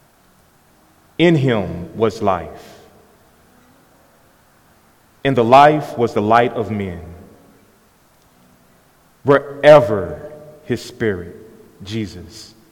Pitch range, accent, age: 95-120 Hz, American, 30-49